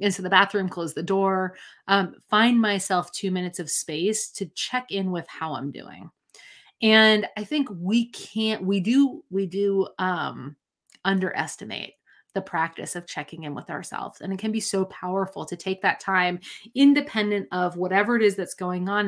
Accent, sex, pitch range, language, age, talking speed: American, female, 180-215 Hz, English, 30-49, 175 wpm